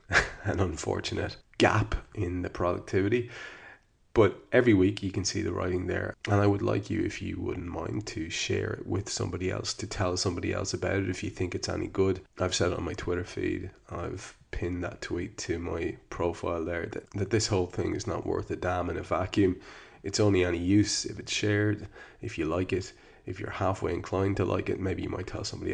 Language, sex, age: English, male, 20-39